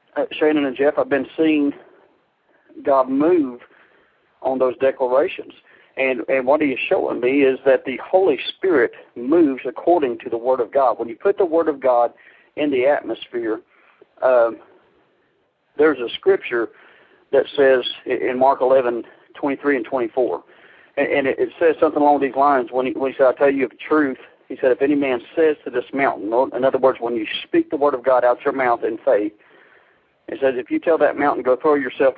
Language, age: English, 50-69